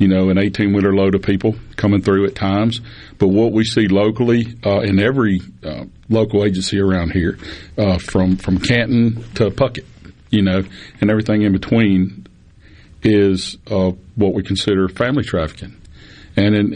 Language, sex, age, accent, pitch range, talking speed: English, male, 50-69, American, 90-105 Hz, 160 wpm